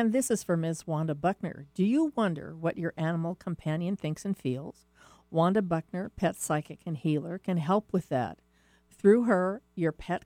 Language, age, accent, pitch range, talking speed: English, 50-69, American, 155-195 Hz, 180 wpm